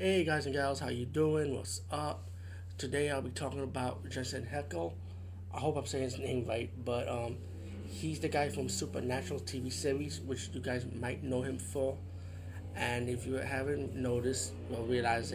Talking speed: 180 wpm